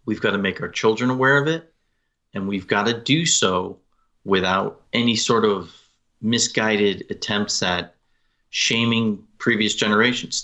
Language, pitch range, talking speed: English, 100-130 Hz, 145 wpm